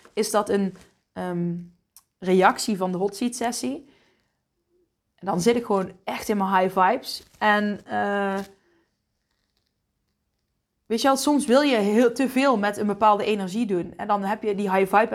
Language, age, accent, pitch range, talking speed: Dutch, 20-39, Dutch, 185-225 Hz, 170 wpm